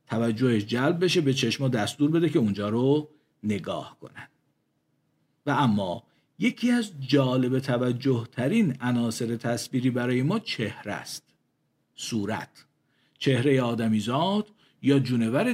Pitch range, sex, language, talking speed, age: 115-150 Hz, male, Persian, 115 wpm, 50-69